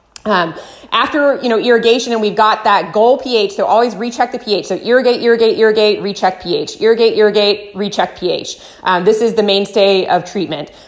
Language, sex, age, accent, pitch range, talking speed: English, female, 20-39, American, 195-240 Hz, 180 wpm